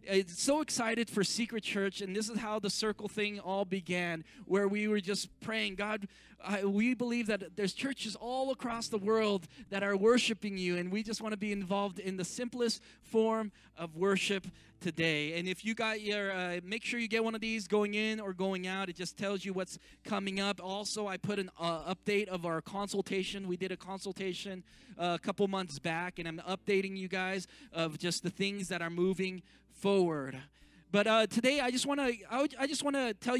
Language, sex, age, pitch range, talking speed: English, male, 20-39, 185-225 Hz, 205 wpm